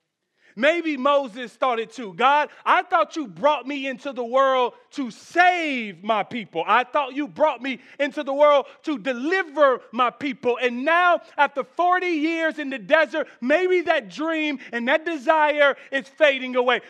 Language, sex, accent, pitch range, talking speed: English, male, American, 215-305 Hz, 165 wpm